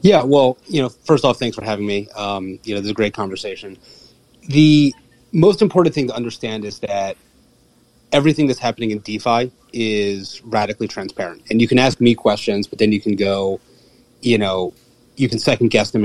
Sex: male